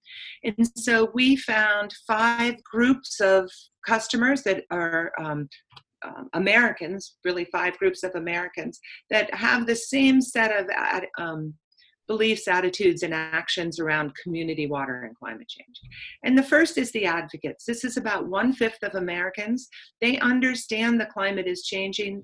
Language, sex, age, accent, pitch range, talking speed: English, female, 40-59, American, 180-235 Hz, 140 wpm